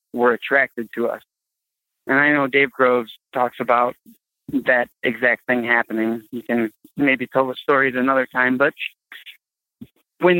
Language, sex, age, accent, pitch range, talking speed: English, male, 20-39, American, 115-130 Hz, 145 wpm